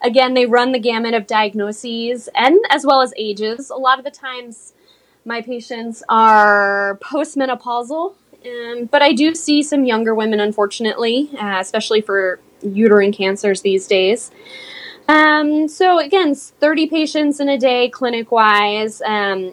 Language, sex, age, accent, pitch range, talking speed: English, female, 10-29, American, 220-285 Hz, 145 wpm